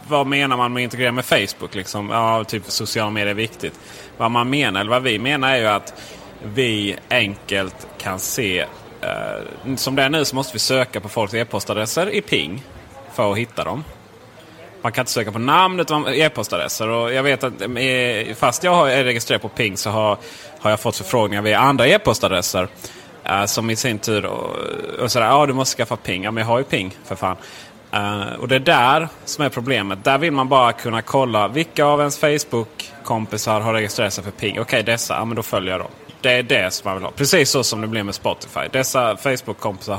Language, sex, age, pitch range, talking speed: Swedish, male, 30-49, 105-140 Hz, 215 wpm